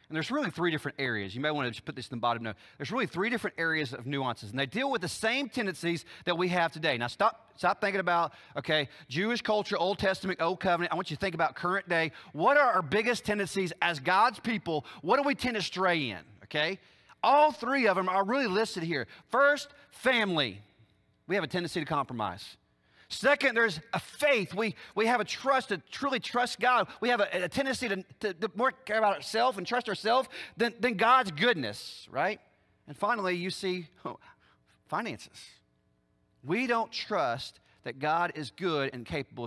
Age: 40-59